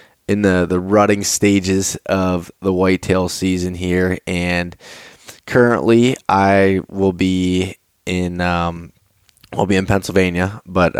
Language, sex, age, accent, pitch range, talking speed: English, male, 20-39, American, 90-100 Hz, 120 wpm